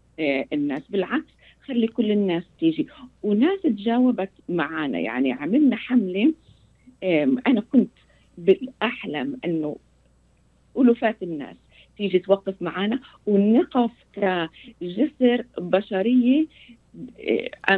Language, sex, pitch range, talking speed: Arabic, female, 180-255 Hz, 80 wpm